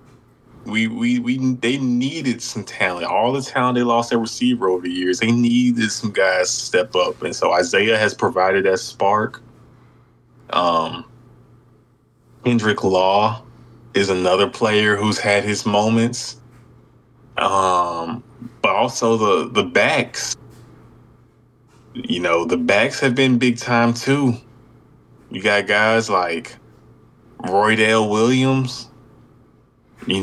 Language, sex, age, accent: English, male, 20-39, American